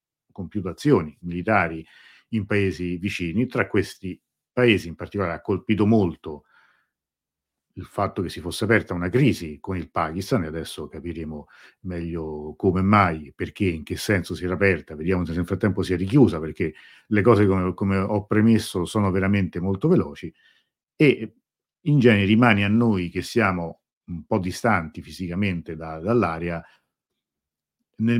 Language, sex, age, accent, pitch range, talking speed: Italian, male, 50-69, native, 85-110 Hz, 150 wpm